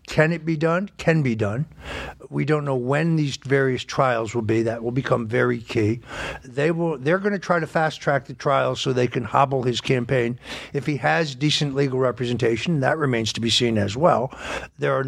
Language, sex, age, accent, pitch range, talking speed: English, male, 60-79, American, 130-165 Hz, 210 wpm